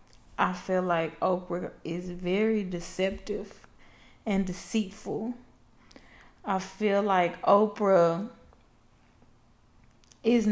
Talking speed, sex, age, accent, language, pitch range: 80 wpm, female, 20-39, American, English, 175-220 Hz